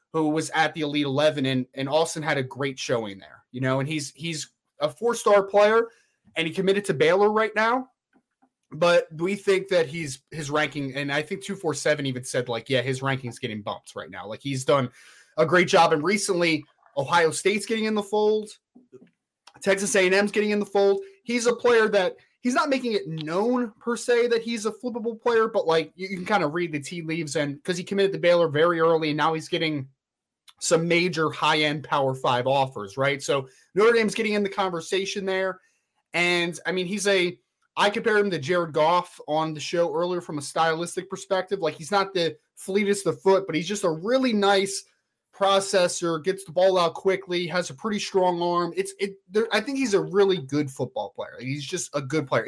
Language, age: English, 20-39